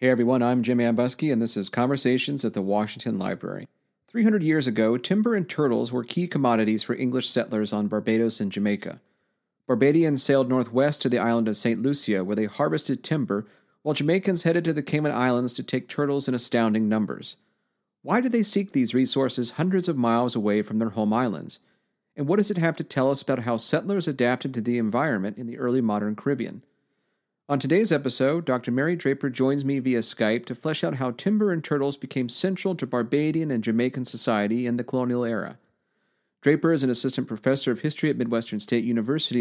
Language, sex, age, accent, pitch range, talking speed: English, male, 40-59, American, 120-155 Hz, 195 wpm